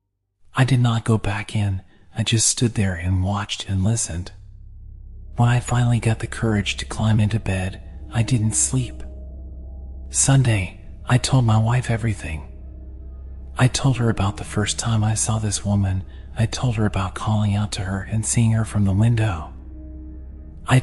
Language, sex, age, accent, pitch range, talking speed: English, male, 40-59, American, 80-110 Hz, 170 wpm